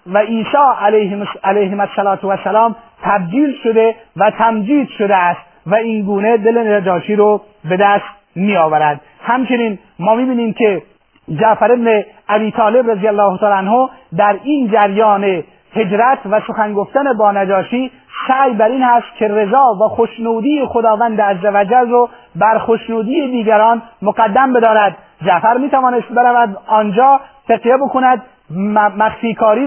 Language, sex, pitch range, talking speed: Persian, male, 205-245 Hz, 130 wpm